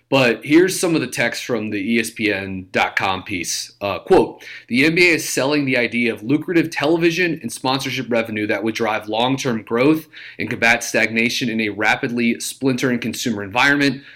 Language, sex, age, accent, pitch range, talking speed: English, male, 30-49, American, 110-130 Hz, 160 wpm